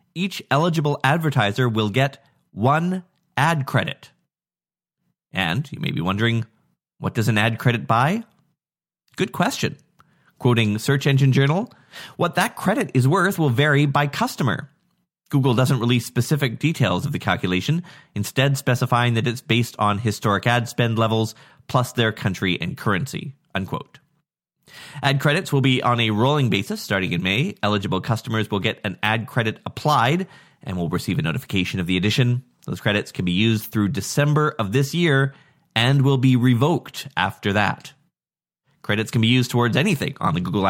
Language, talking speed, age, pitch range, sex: English, 160 wpm, 30-49, 110-145 Hz, male